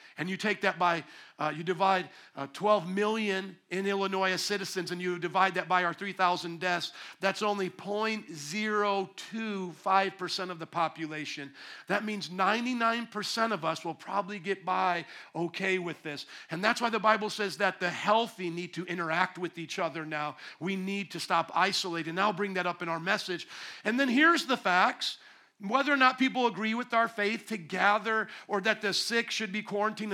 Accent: American